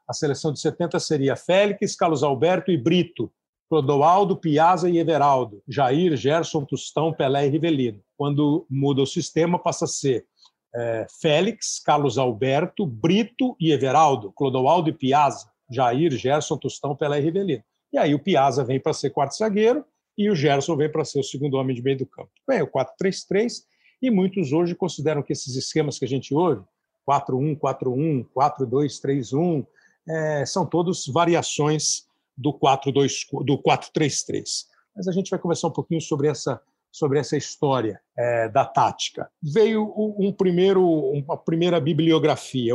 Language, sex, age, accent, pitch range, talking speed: Portuguese, male, 50-69, Brazilian, 140-180 Hz, 155 wpm